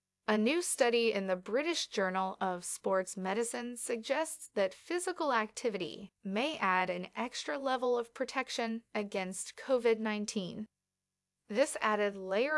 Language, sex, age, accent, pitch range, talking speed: English, female, 30-49, American, 200-255 Hz, 125 wpm